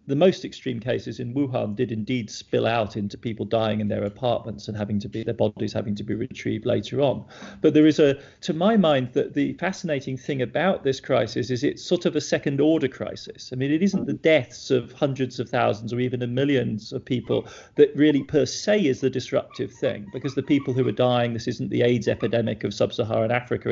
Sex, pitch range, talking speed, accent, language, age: male, 115-140 Hz, 225 wpm, British, English, 40-59